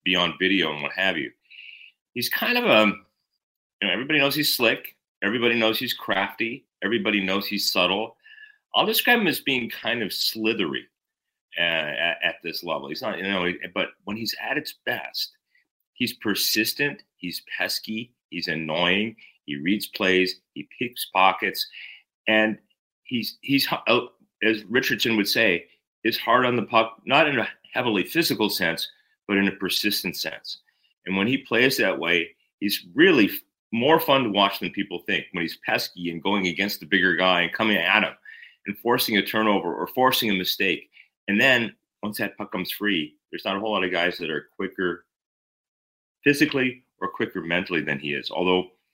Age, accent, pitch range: 40-59, American, 95-135 Hz